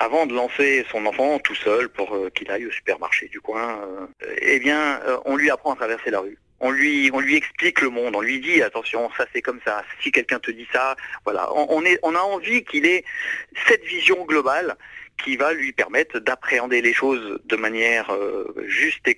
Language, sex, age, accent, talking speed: French, male, 50-69, French, 205 wpm